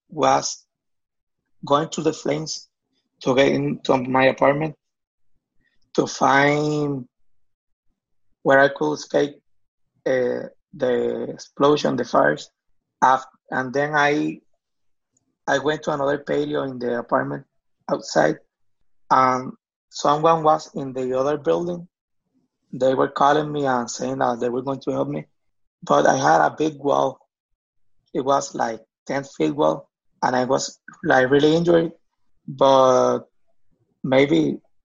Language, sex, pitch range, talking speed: English, male, 125-150 Hz, 125 wpm